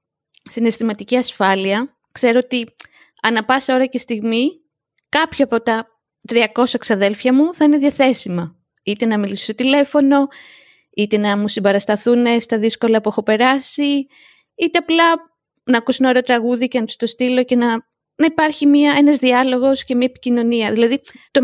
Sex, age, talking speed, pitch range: female, 20-39, 155 wpm, 230-280 Hz